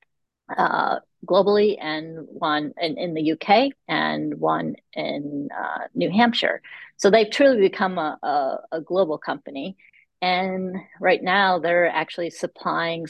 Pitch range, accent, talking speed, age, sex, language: 160-195 Hz, American, 130 wpm, 40-59, female, English